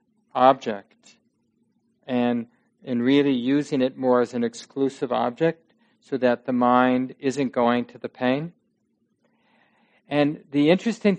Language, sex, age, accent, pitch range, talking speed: English, male, 40-59, American, 125-180 Hz, 125 wpm